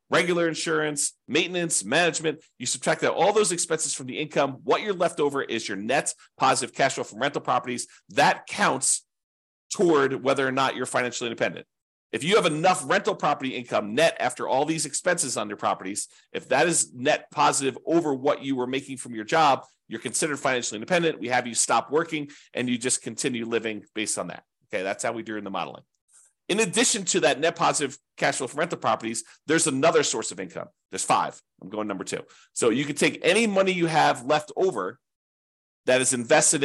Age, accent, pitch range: 40-59, American, 115-155 Hz